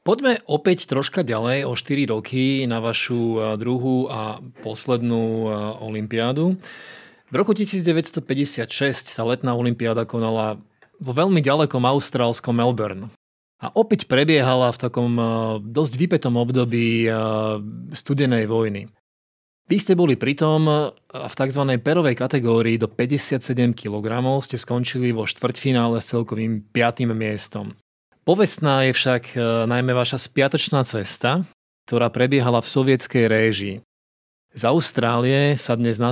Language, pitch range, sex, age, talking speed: Slovak, 110-135 Hz, male, 30-49, 120 wpm